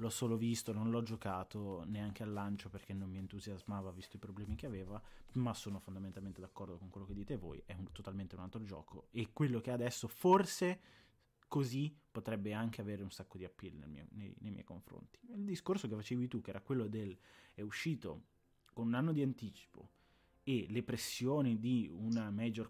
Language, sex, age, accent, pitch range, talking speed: Italian, male, 20-39, native, 100-125 Hz, 195 wpm